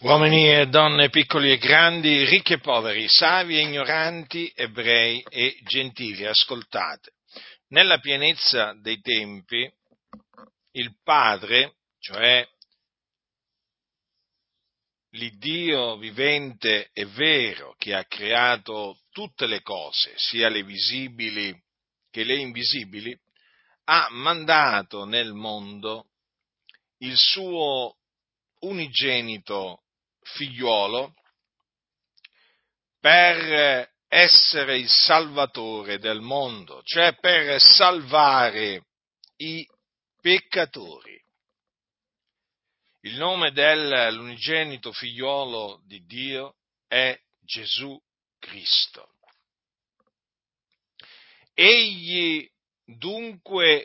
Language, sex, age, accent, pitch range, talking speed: Italian, male, 50-69, native, 115-160 Hz, 75 wpm